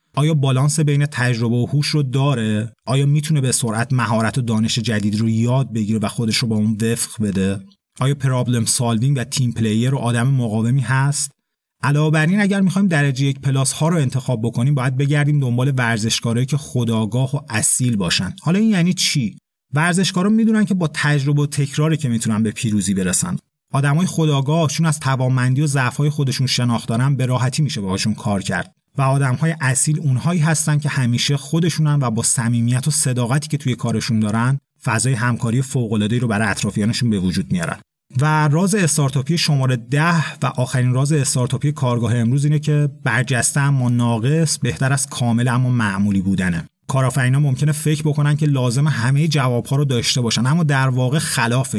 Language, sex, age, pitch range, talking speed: Persian, male, 30-49, 120-150 Hz, 180 wpm